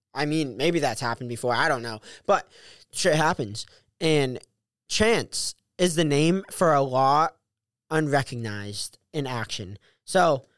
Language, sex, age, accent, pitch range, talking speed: English, male, 20-39, American, 130-180 Hz, 135 wpm